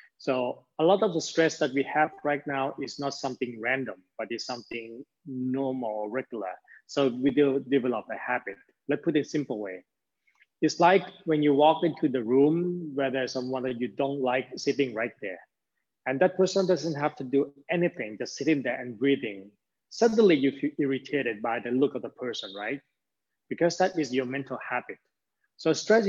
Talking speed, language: 190 wpm, English